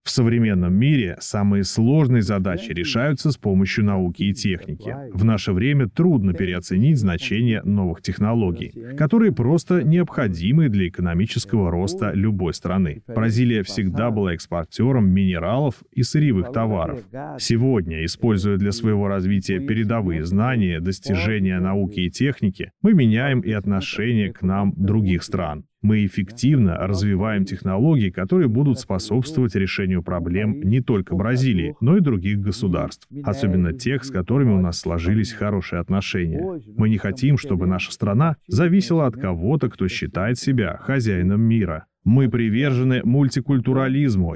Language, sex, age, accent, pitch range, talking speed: Russian, male, 30-49, native, 95-125 Hz, 130 wpm